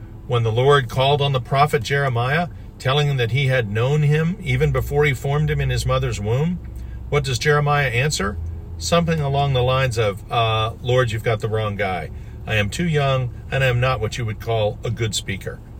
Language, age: English, 50-69